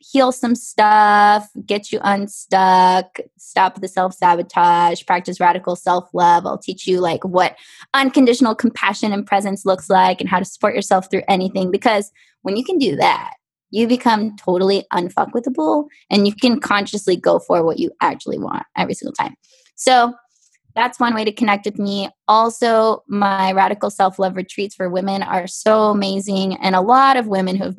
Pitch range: 190-235 Hz